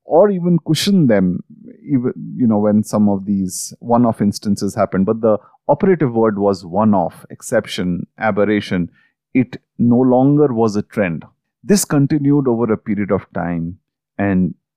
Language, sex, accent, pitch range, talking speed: English, male, Indian, 105-150 Hz, 145 wpm